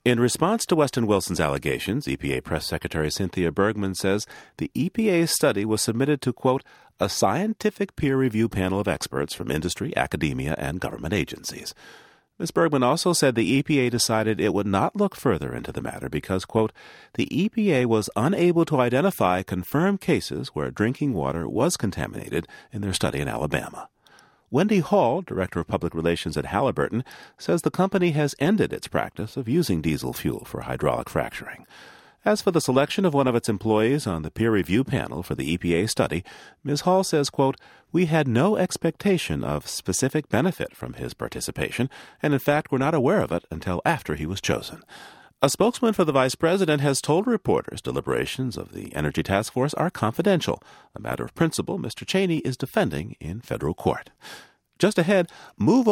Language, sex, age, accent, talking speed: English, male, 40-59, American, 175 wpm